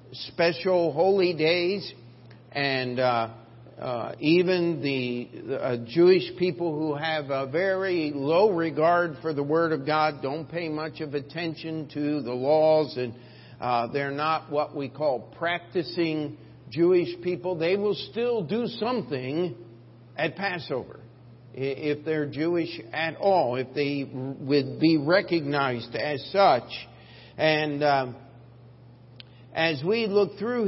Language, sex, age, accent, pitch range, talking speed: English, male, 50-69, American, 135-170 Hz, 130 wpm